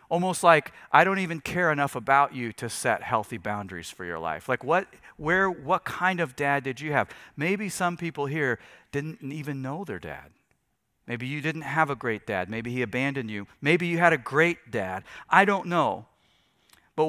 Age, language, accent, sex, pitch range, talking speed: 40-59, English, American, male, 115-160 Hz, 195 wpm